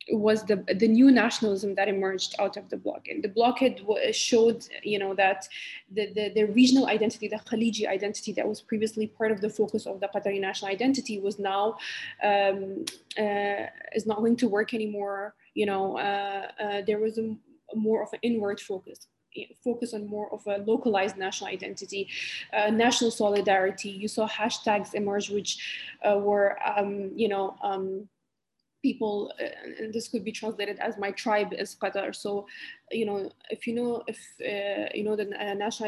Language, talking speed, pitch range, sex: English, 180 wpm, 200-225 Hz, female